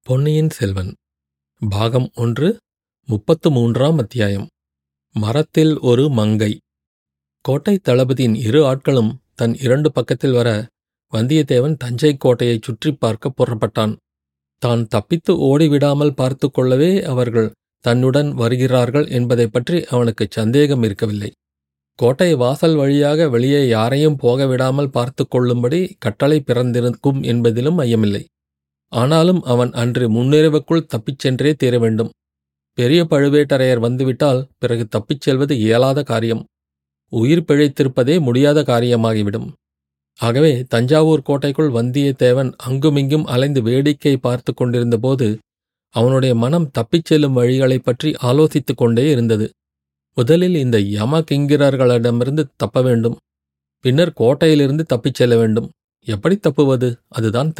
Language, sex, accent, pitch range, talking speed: Tamil, male, native, 115-145 Hz, 100 wpm